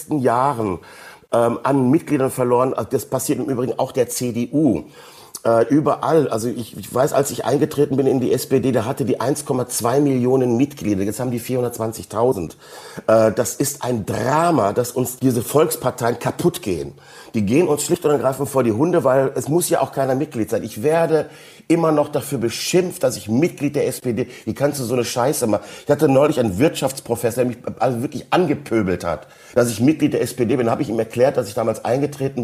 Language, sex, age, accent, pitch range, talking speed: German, male, 50-69, German, 115-140 Hz, 195 wpm